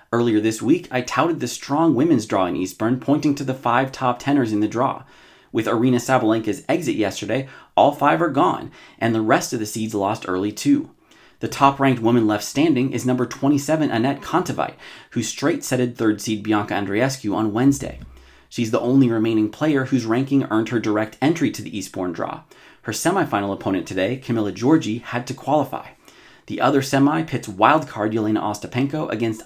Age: 30-49